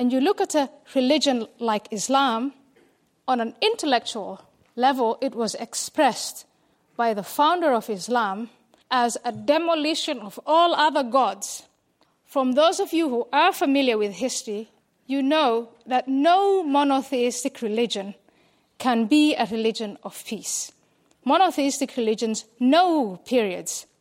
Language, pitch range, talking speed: English, 230-290 Hz, 130 wpm